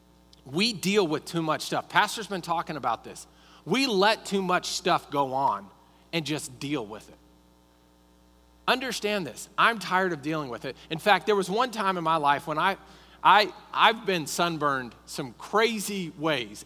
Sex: male